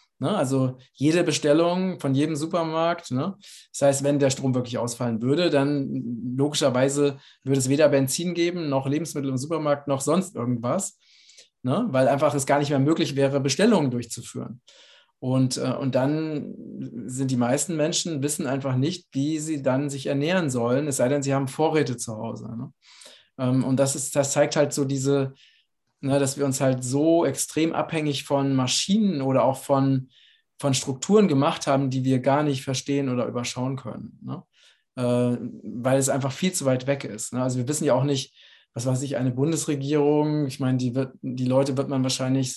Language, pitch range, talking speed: German, 130-150 Hz, 175 wpm